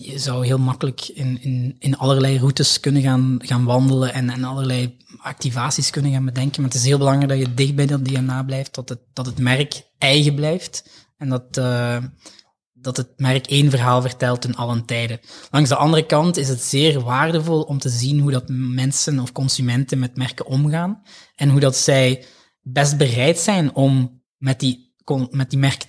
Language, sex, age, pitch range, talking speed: Dutch, male, 20-39, 125-140 Hz, 195 wpm